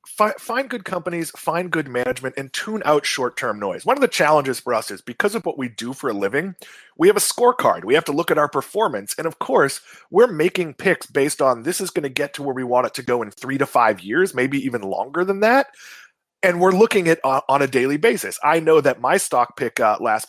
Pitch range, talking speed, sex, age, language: 135-190 Hz, 250 wpm, male, 30-49, English